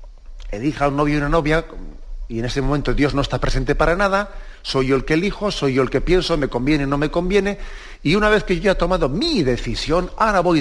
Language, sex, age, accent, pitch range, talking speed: Spanish, male, 40-59, Spanish, 120-160 Hz, 245 wpm